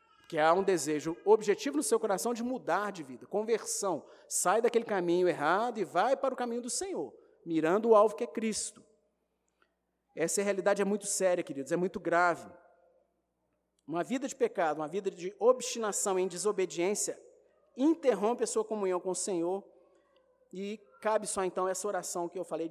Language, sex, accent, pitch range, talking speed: Portuguese, male, Brazilian, 185-275 Hz, 170 wpm